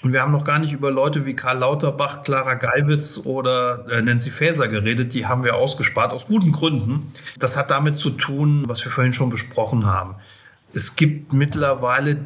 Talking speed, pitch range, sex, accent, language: 185 wpm, 120-145 Hz, male, German, German